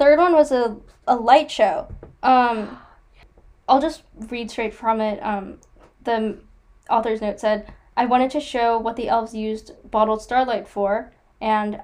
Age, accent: 10-29, American